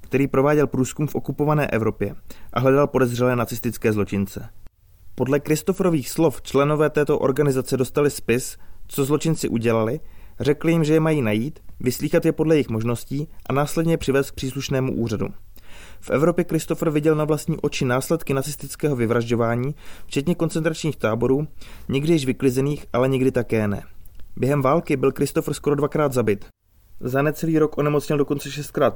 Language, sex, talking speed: Czech, male, 145 wpm